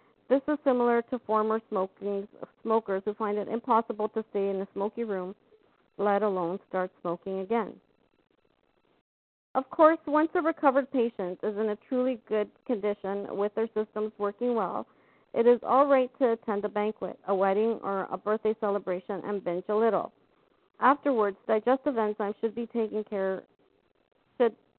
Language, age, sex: English, 50-69, female